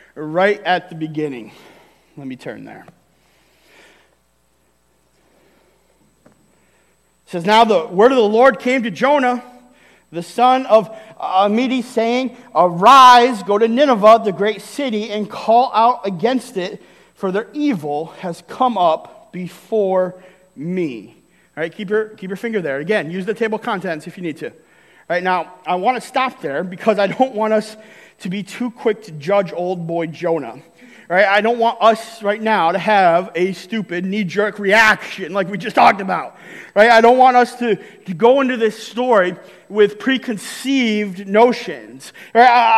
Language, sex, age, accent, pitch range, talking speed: English, male, 40-59, American, 185-240 Hz, 165 wpm